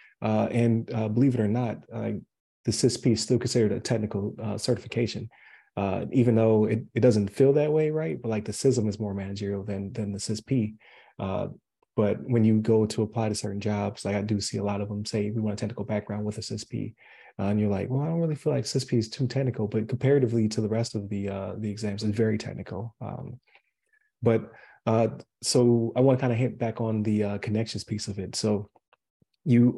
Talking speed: 225 wpm